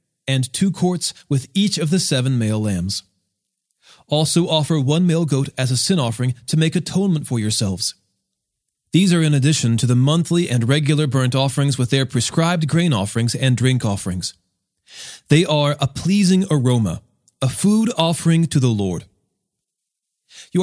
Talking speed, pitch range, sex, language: 160 wpm, 125-170 Hz, male, English